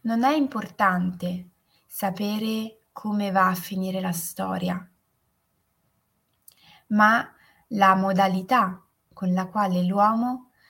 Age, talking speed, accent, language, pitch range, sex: 20-39, 95 wpm, native, Italian, 180-220 Hz, female